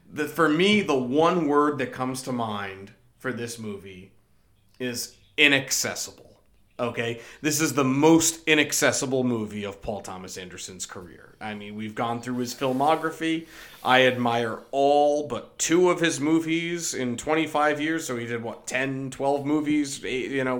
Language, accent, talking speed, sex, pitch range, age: English, American, 155 wpm, male, 115-145 Hz, 30-49